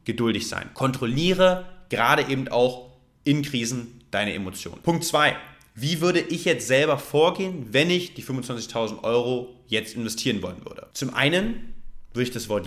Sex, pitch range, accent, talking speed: male, 115-150 Hz, German, 155 wpm